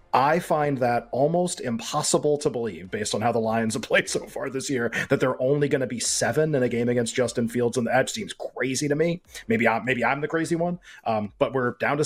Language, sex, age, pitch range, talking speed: English, male, 30-49, 120-140 Hz, 250 wpm